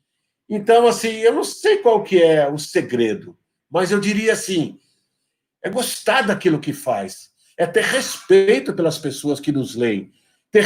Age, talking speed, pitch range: 50-69, 160 wpm, 165-220 Hz